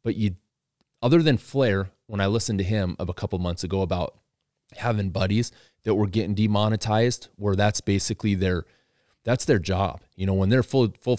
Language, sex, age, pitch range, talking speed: English, male, 30-49, 90-110 Hz, 190 wpm